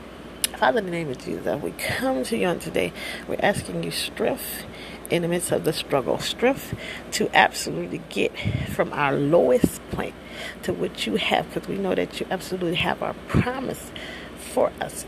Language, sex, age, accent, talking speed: English, female, 30-49, American, 185 wpm